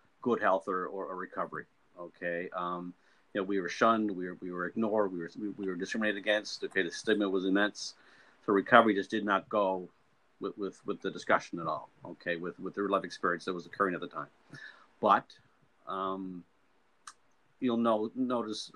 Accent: American